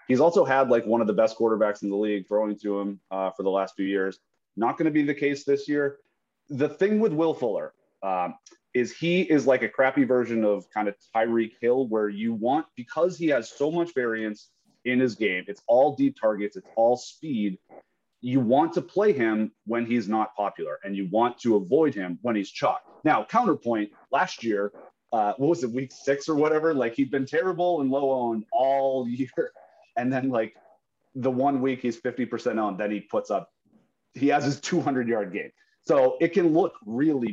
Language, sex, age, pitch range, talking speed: English, male, 30-49, 110-145 Hz, 205 wpm